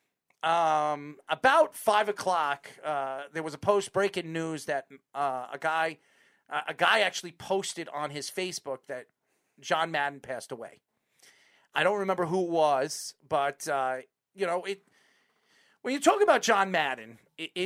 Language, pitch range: English, 150-195 Hz